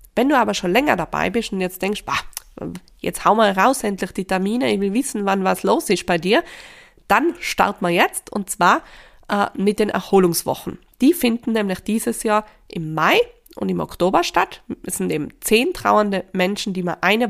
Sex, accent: female, German